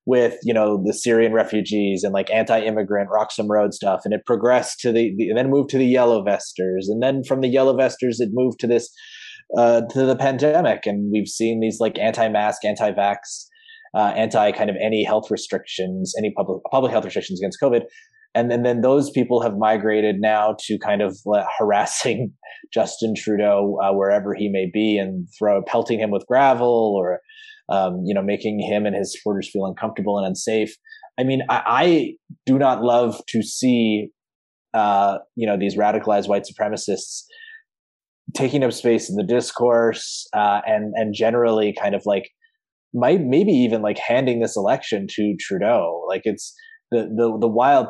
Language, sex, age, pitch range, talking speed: English, male, 20-39, 105-125 Hz, 175 wpm